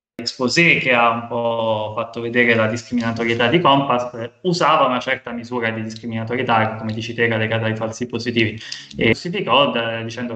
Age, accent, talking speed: 20-39, native, 160 wpm